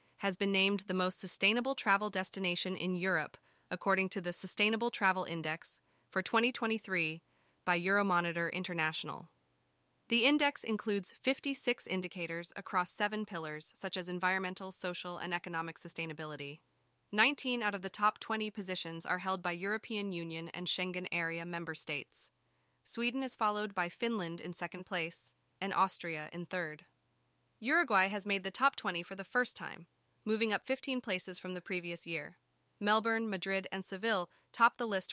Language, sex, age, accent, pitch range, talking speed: English, female, 20-39, American, 175-215 Hz, 155 wpm